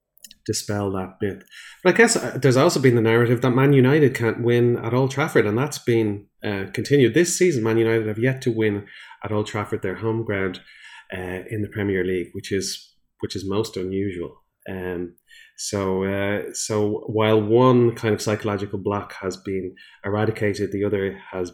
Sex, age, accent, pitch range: male, 30-49, Irish, 95-120 Hz